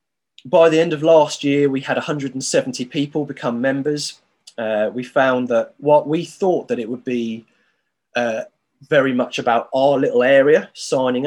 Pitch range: 120-145 Hz